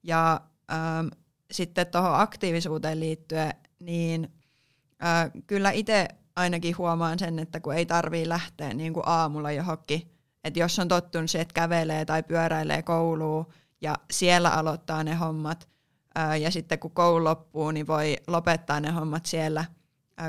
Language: Finnish